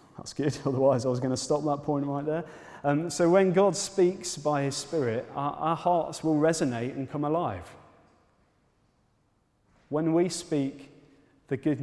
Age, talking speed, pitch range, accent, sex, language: 30-49, 165 wpm, 110-140 Hz, British, male, English